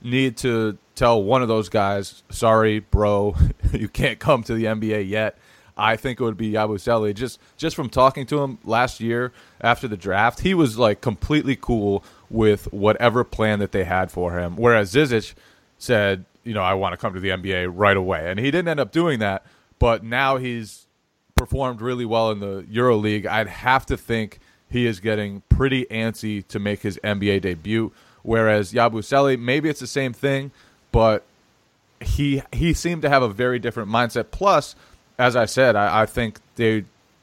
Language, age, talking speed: English, 20-39, 185 wpm